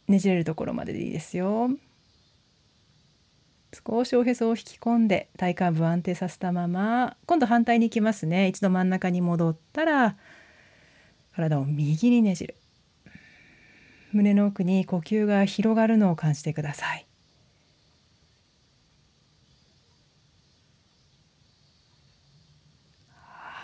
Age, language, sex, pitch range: 40-59, Japanese, female, 165-235 Hz